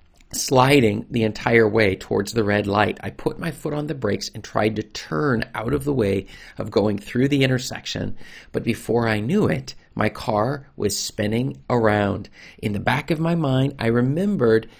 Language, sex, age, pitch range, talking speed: English, male, 40-59, 100-125 Hz, 185 wpm